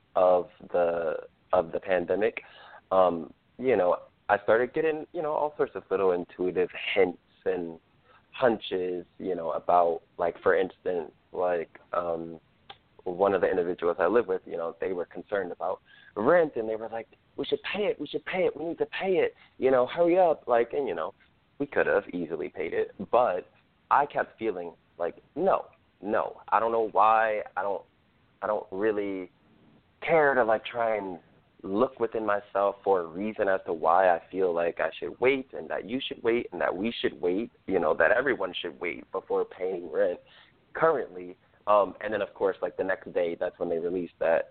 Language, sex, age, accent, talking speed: English, male, 20-39, American, 195 wpm